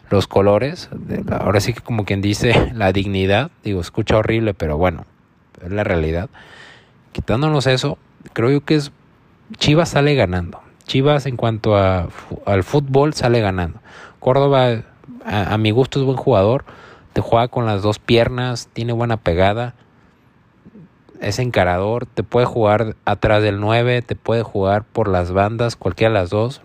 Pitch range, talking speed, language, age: 100-120 Hz, 160 wpm, Spanish, 20-39